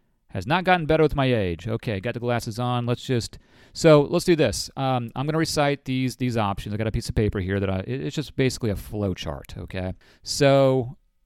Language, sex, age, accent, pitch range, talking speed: English, male, 40-59, American, 110-135 Hz, 225 wpm